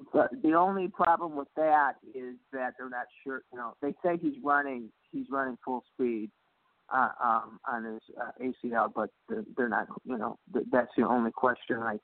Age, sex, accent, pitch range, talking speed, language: 50-69, male, American, 125-185 Hz, 190 wpm, English